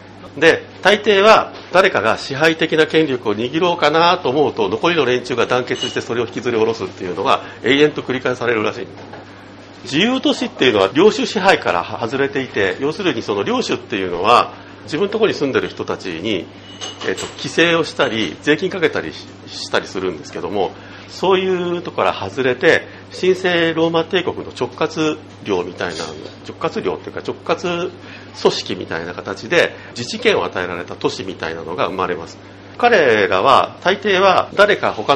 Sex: male